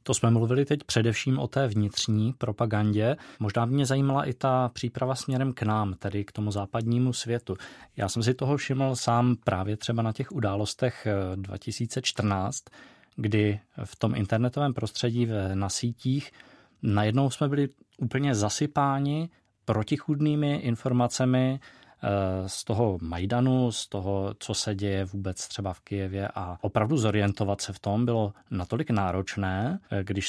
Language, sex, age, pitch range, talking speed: Czech, male, 20-39, 105-125 Hz, 140 wpm